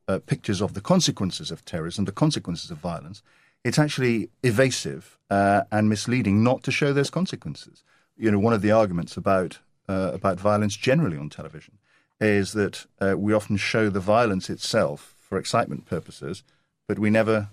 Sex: male